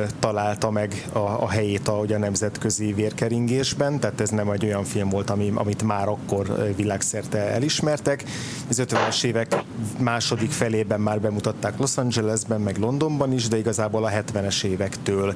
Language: Hungarian